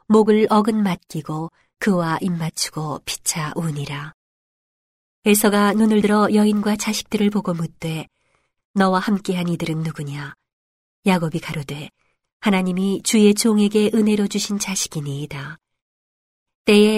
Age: 40-59